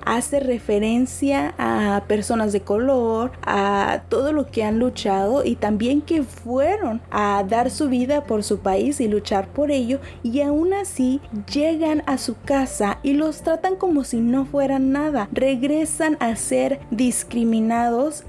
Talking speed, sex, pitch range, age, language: 150 wpm, female, 225-270 Hz, 20-39, Spanish